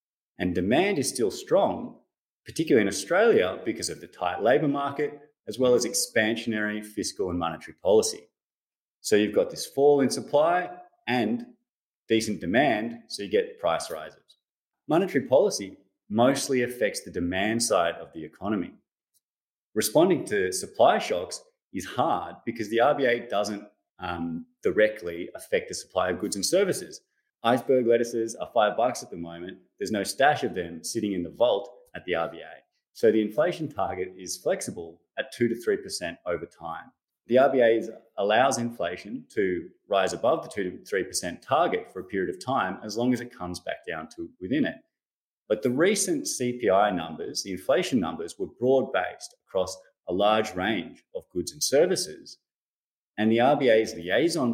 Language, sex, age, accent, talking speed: English, male, 30-49, Australian, 160 wpm